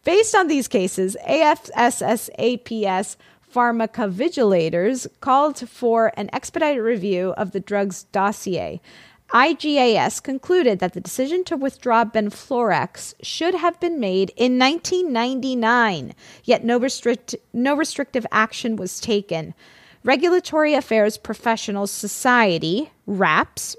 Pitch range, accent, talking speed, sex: 200-265 Hz, American, 105 wpm, female